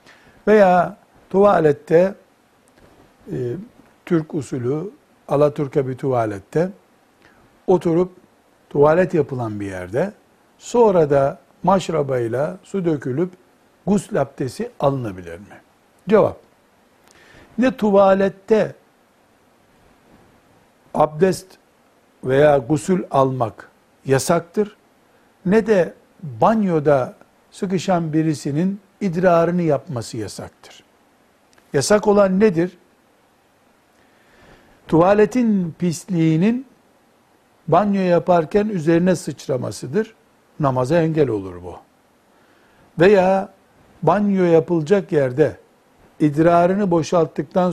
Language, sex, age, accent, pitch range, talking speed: Turkish, male, 60-79, native, 145-195 Hz, 70 wpm